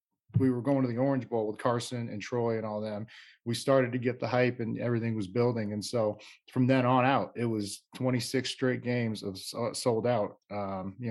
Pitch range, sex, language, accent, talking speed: 110-130 Hz, male, English, American, 215 wpm